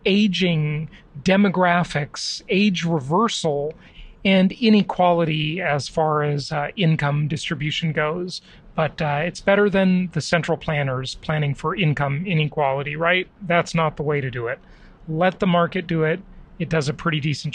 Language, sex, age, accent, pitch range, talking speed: English, male, 40-59, American, 155-195 Hz, 145 wpm